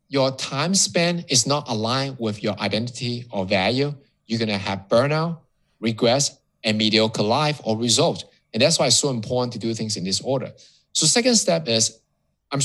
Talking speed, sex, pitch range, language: 185 wpm, male, 105-150 Hz, English